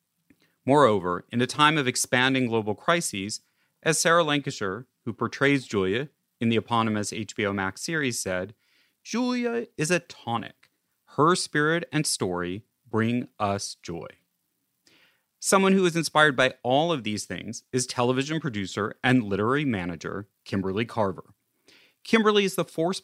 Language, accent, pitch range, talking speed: English, American, 105-150 Hz, 140 wpm